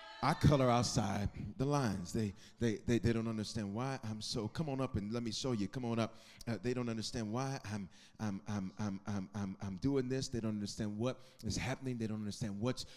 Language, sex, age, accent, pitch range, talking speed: English, male, 30-49, American, 110-145 Hz, 225 wpm